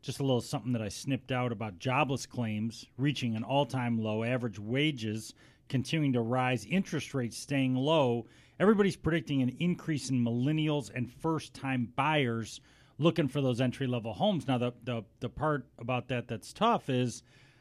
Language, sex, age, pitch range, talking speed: English, male, 40-59, 125-155 Hz, 165 wpm